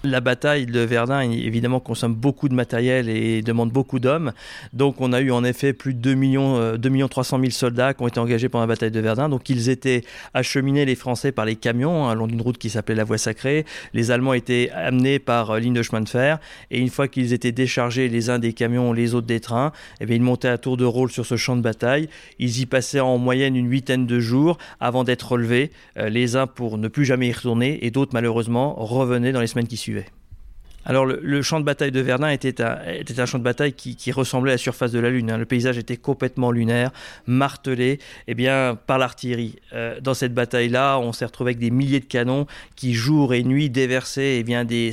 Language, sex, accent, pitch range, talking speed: French, male, French, 120-135 Hz, 230 wpm